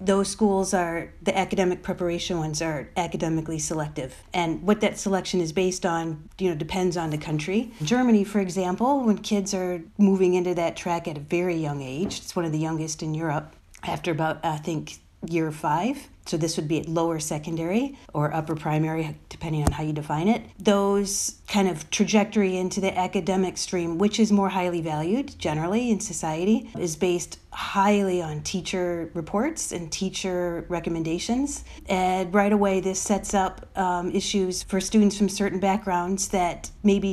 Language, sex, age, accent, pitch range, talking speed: English, female, 40-59, American, 170-200 Hz, 175 wpm